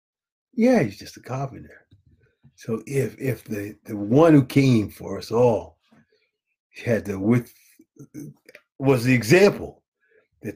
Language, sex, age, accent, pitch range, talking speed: English, male, 50-69, American, 105-155 Hz, 130 wpm